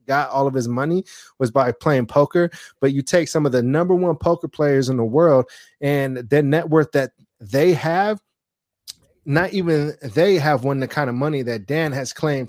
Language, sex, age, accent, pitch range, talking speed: English, male, 20-39, American, 130-155 Hz, 200 wpm